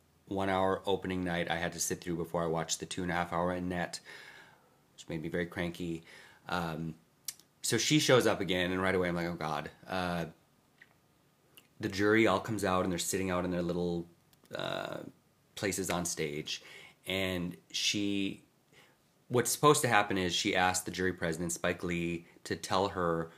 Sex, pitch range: male, 85-105 Hz